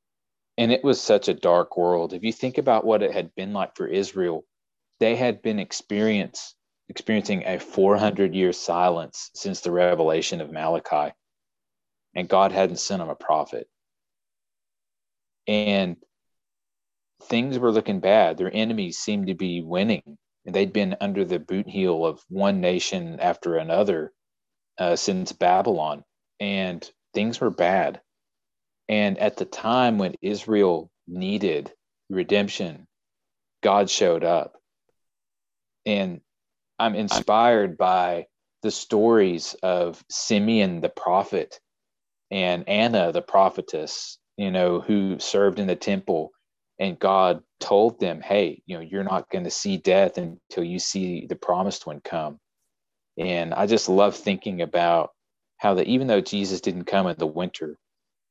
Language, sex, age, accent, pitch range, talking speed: English, male, 30-49, American, 90-110 Hz, 140 wpm